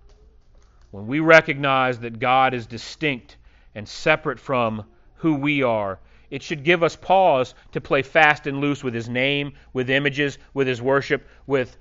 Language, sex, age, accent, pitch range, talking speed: English, male, 40-59, American, 115-160 Hz, 165 wpm